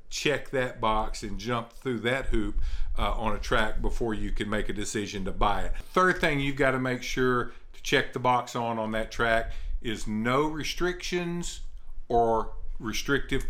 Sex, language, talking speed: male, English, 180 wpm